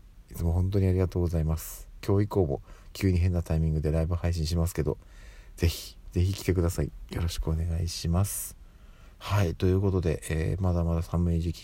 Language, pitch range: Japanese, 80-95 Hz